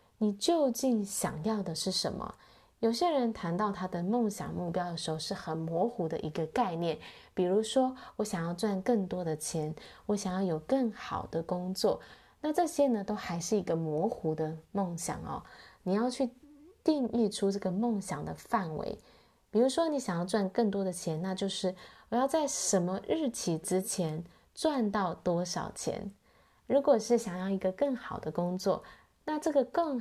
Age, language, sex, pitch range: 20-39, Chinese, female, 170-230 Hz